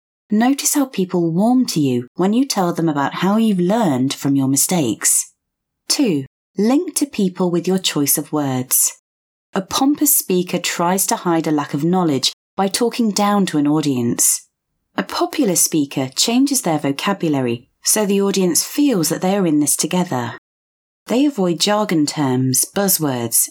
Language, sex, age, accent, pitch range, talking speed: English, female, 30-49, British, 150-225 Hz, 160 wpm